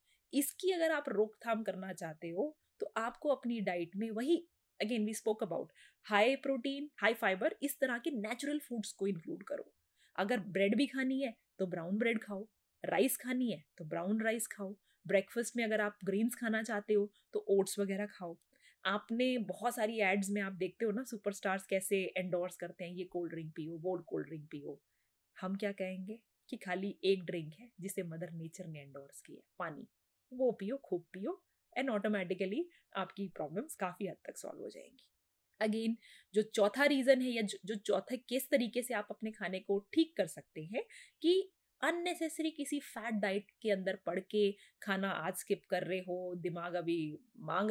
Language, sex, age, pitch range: Hindi, female, 20-39, 185-255 Hz